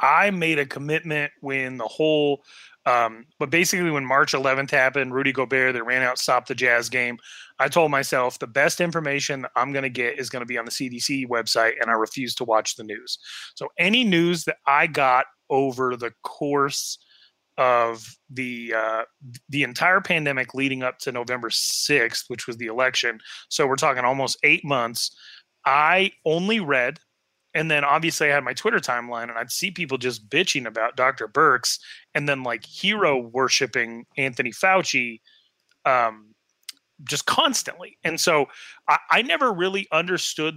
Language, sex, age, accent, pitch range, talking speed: English, male, 30-49, American, 125-160 Hz, 175 wpm